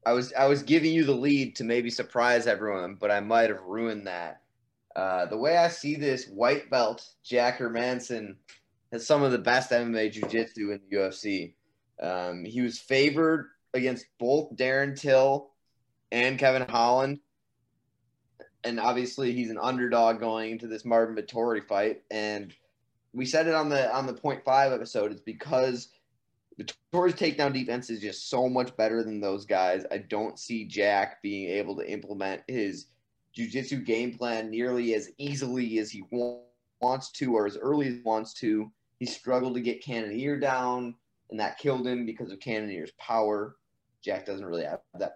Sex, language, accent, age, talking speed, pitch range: male, English, American, 20-39, 170 wpm, 110-130 Hz